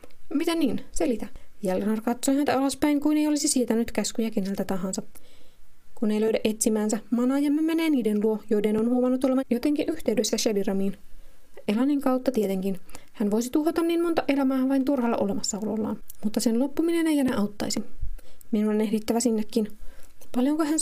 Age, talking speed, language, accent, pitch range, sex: 20-39, 155 wpm, Finnish, native, 215-275 Hz, female